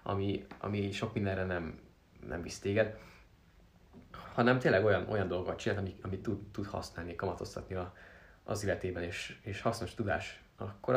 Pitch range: 95-115 Hz